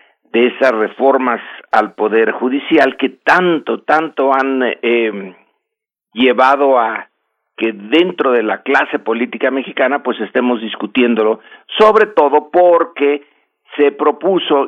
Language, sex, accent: Spanish, male, Mexican